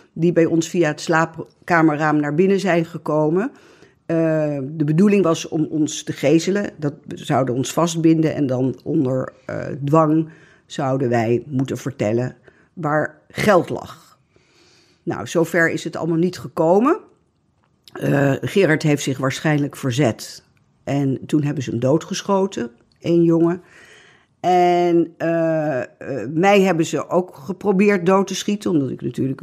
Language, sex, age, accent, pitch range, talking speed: Dutch, female, 50-69, Dutch, 145-180 Hz, 140 wpm